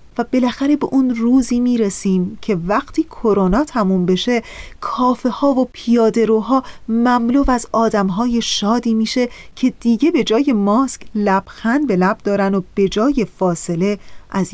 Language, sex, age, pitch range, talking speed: Persian, female, 30-49, 195-250 Hz, 150 wpm